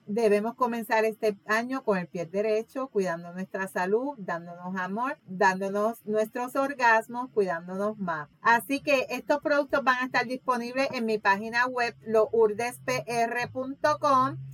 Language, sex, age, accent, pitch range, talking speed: Spanish, female, 40-59, American, 210-275 Hz, 130 wpm